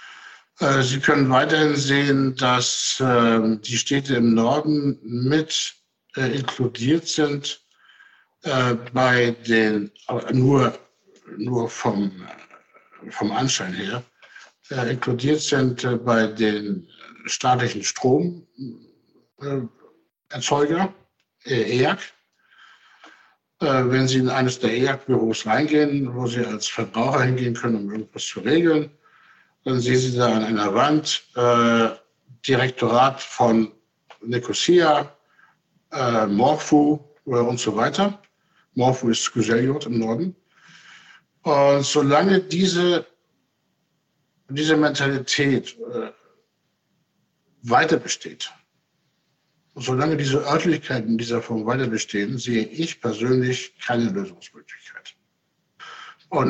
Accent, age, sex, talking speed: German, 60-79, male, 90 wpm